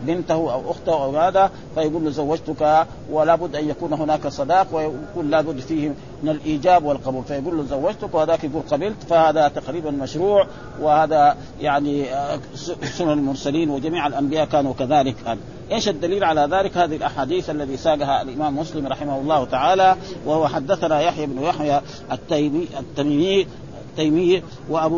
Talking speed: 140 wpm